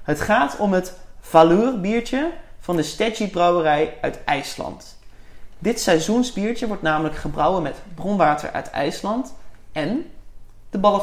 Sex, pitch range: male, 145-215 Hz